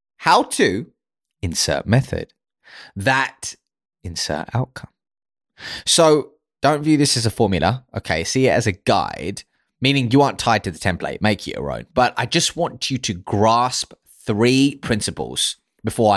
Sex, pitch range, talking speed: male, 95-135 Hz, 150 wpm